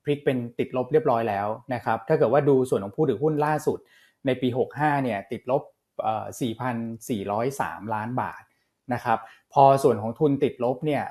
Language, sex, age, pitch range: Thai, male, 20-39, 115-145 Hz